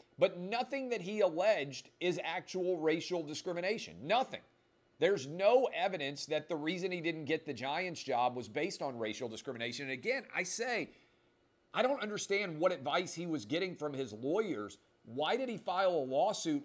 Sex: male